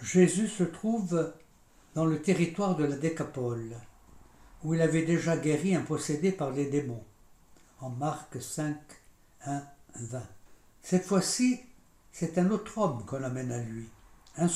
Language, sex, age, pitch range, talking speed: French, male, 60-79, 145-185 Hz, 145 wpm